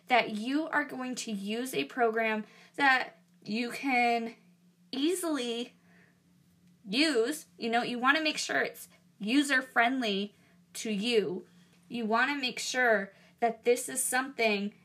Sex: female